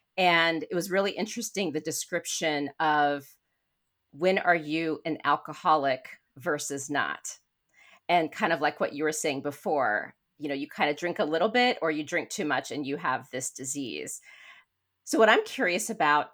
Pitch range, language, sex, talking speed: 150-185 Hz, English, female, 175 wpm